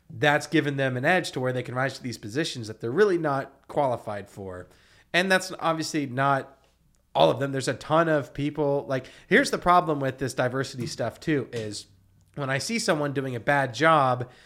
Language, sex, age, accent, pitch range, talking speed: English, male, 30-49, American, 125-160 Hz, 205 wpm